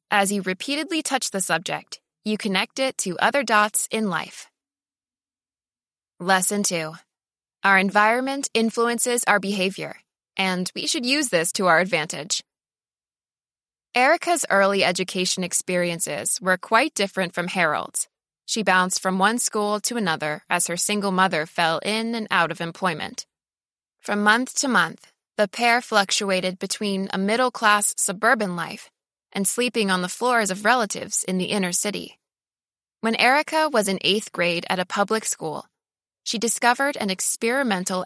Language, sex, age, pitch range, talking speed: English, female, 20-39, 185-235 Hz, 145 wpm